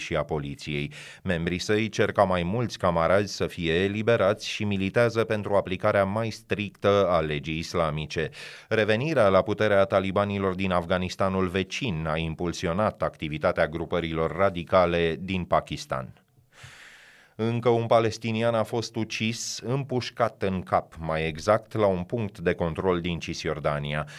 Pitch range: 85-110 Hz